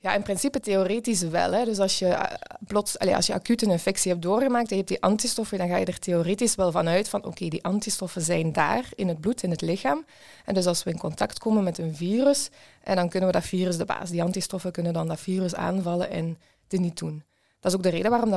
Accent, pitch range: Dutch, 170-205 Hz